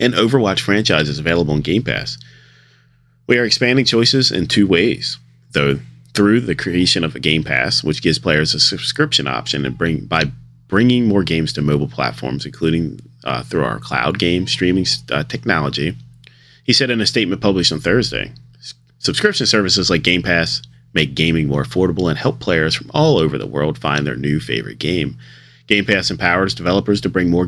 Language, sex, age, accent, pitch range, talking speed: English, male, 30-49, American, 70-100 Hz, 180 wpm